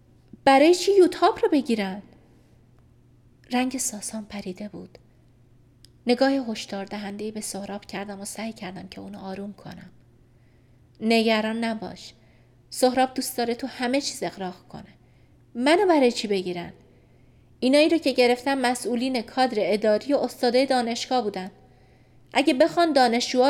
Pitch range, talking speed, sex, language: 185-275 Hz, 130 wpm, female, Persian